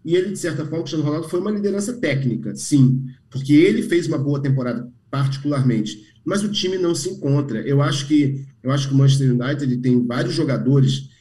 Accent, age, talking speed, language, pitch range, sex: Brazilian, 40-59, 210 wpm, Portuguese, 130-165 Hz, male